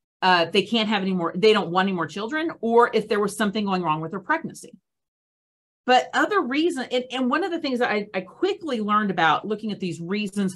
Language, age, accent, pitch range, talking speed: English, 40-59, American, 170-230 Hz, 235 wpm